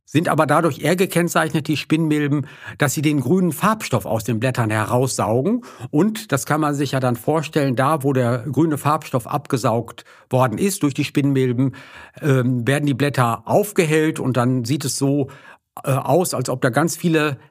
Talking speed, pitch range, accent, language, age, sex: 170 wpm, 125-155 Hz, German, German, 50-69, male